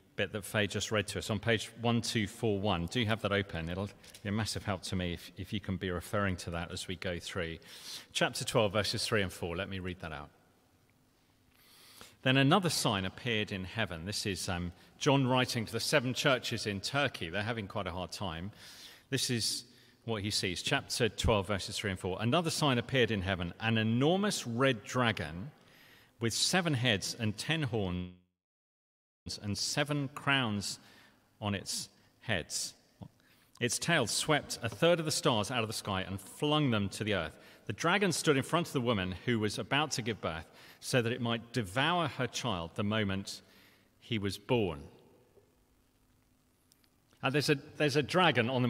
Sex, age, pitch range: male, 40-59, 95-125 Hz